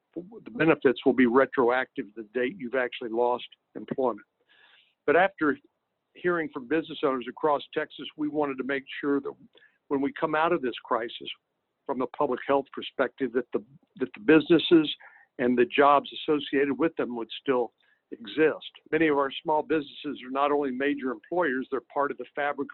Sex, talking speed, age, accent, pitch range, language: male, 175 wpm, 60-79, American, 125-150 Hz, English